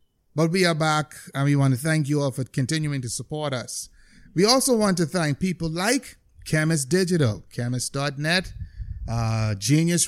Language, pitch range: English, 140-175 Hz